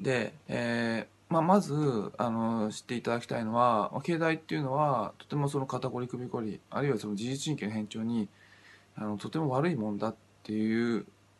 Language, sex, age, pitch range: Japanese, male, 20-39, 105-125 Hz